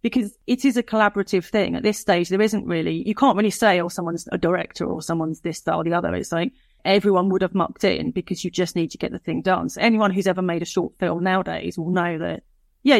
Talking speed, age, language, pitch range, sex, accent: 260 wpm, 30-49, English, 165-205 Hz, female, British